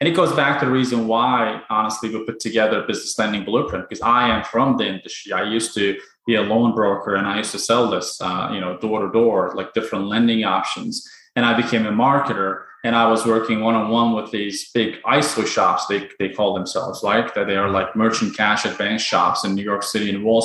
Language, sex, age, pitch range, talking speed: English, male, 20-39, 110-125 Hz, 230 wpm